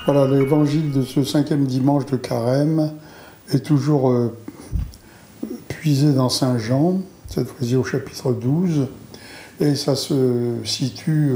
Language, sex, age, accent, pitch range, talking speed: French, male, 60-79, French, 120-140 Hz, 125 wpm